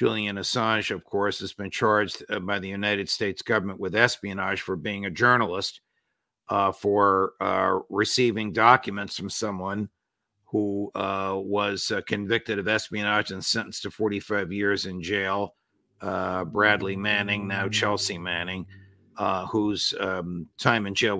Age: 50-69